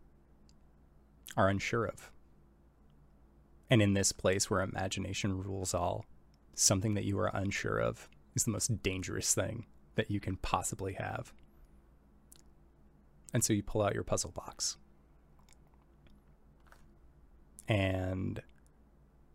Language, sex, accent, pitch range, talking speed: English, male, American, 70-95 Hz, 110 wpm